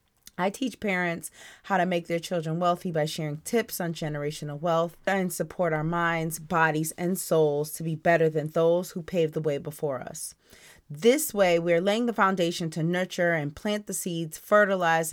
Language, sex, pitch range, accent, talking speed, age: English, female, 155-185 Hz, American, 180 wpm, 30-49